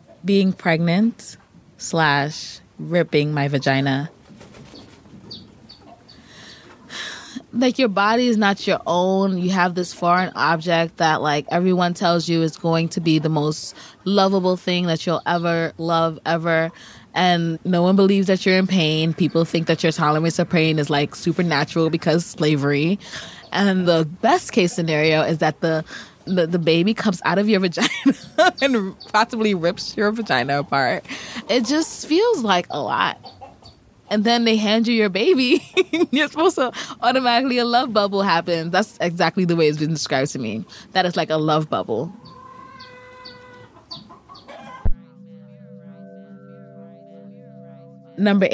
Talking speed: 140 wpm